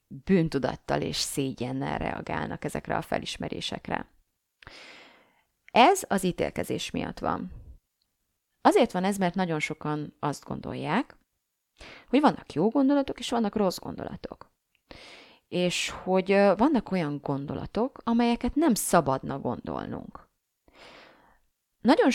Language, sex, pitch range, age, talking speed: Hungarian, female, 155-225 Hz, 30-49, 105 wpm